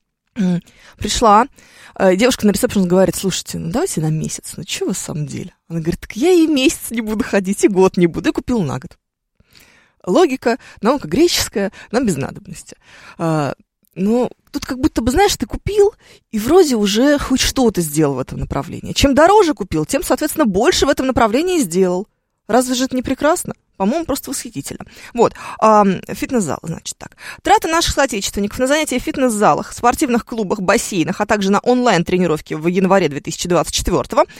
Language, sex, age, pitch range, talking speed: Russian, female, 20-39, 190-260 Hz, 165 wpm